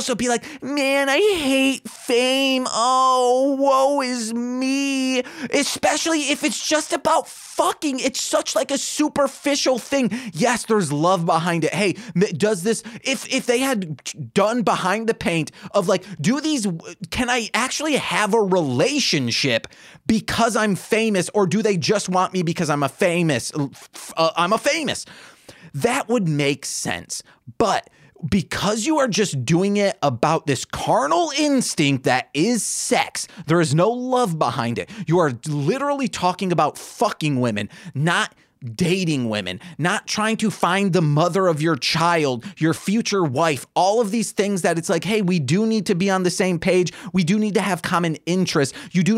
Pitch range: 165-250 Hz